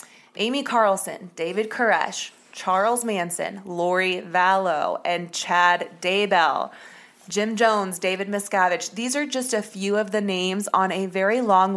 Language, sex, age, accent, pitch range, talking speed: English, female, 20-39, American, 180-220 Hz, 140 wpm